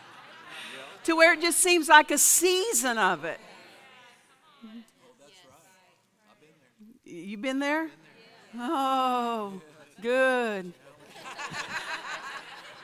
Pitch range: 195-270 Hz